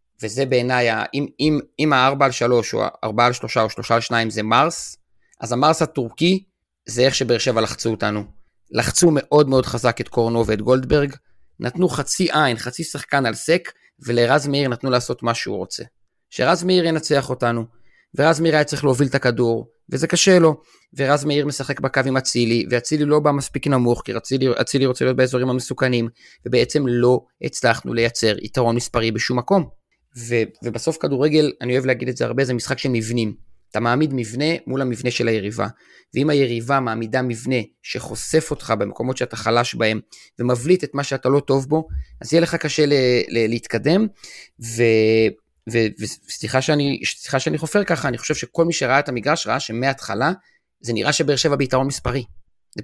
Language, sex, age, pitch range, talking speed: Hebrew, male, 30-49, 115-145 Hz, 170 wpm